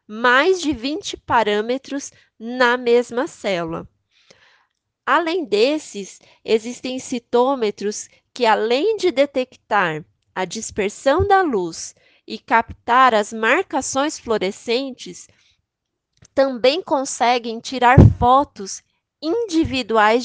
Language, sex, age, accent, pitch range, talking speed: Portuguese, female, 20-39, Brazilian, 215-265 Hz, 85 wpm